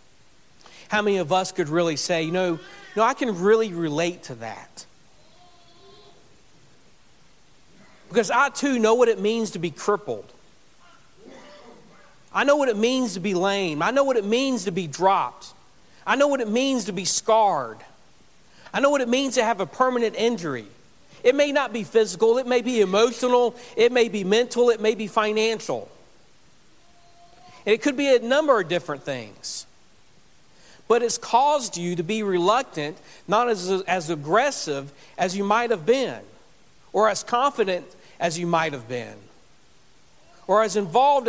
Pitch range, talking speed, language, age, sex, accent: 175-240 Hz, 165 wpm, English, 40-59, male, American